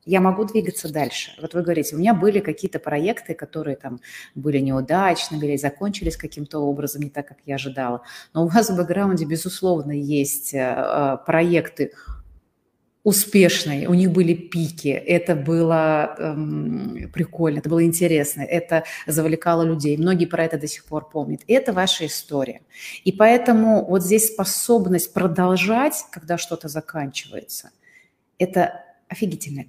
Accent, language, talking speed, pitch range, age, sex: native, Russian, 140 wpm, 150-190 Hz, 30-49, female